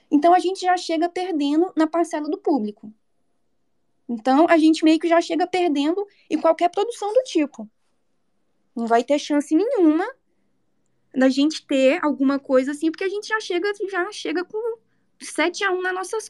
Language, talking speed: Portuguese, 170 wpm